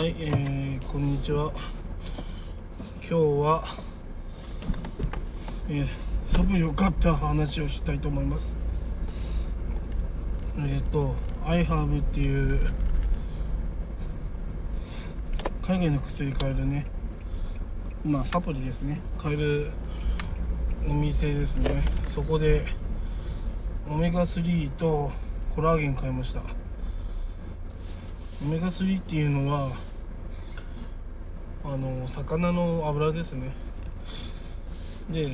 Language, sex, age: Japanese, male, 20-39